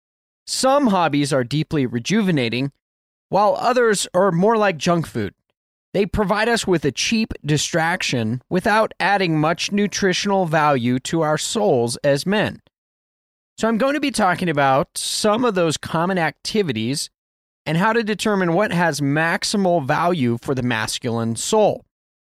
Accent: American